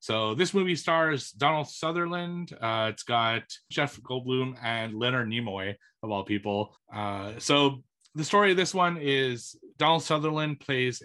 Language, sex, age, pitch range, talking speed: English, male, 30-49, 110-140 Hz, 150 wpm